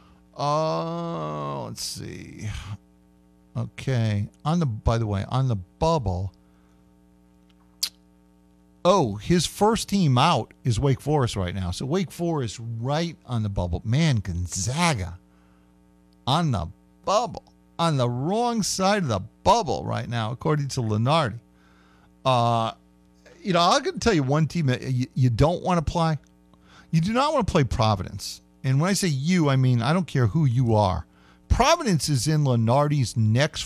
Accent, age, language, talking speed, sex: American, 50-69, English, 155 wpm, male